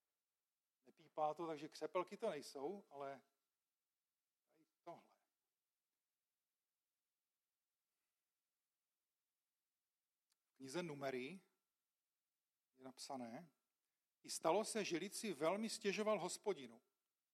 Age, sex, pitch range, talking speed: 40-59, male, 145-185 Hz, 75 wpm